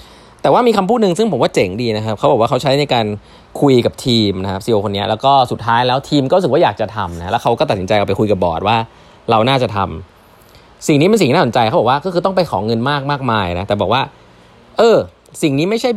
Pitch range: 100-145 Hz